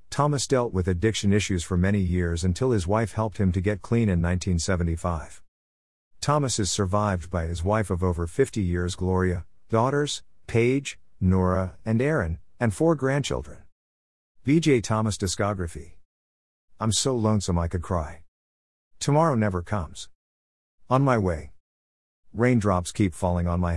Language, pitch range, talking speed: English, 70-110 Hz, 145 wpm